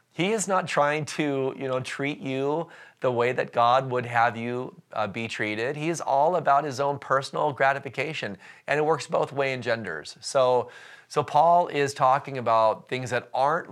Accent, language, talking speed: American, English, 190 wpm